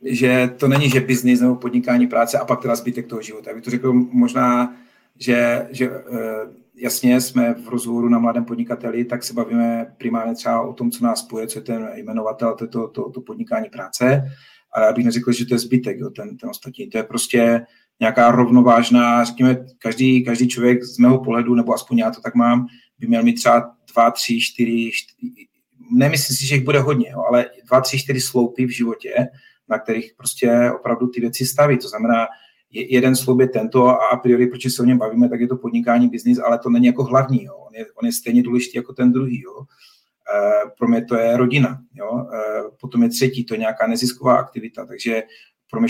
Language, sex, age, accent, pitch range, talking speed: Czech, male, 40-59, native, 120-130 Hz, 210 wpm